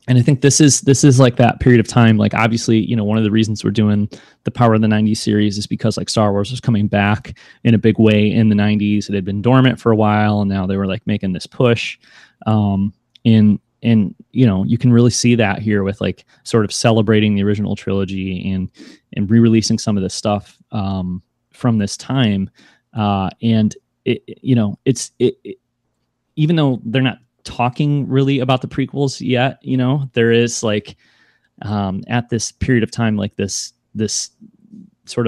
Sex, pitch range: male, 105-120 Hz